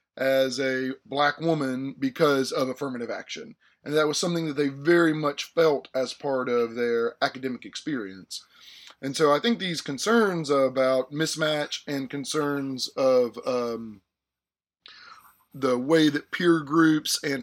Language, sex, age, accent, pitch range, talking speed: English, male, 20-39, American, 135-160 Hz, 140 wpm